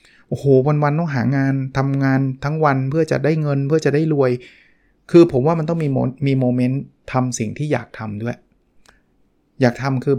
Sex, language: male, Thai